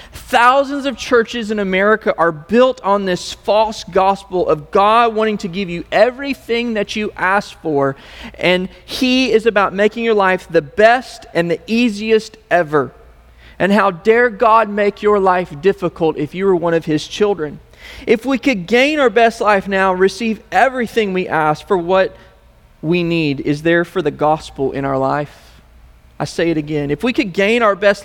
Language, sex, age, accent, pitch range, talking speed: English, male, 30-49, American, 145-210 Hz, 180 wpm